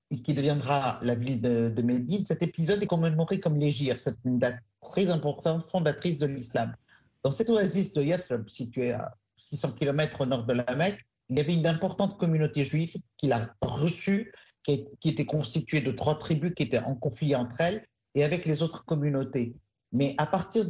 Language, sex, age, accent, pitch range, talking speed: French, male, 50-69, French, 135-175 Hz, 190 wpm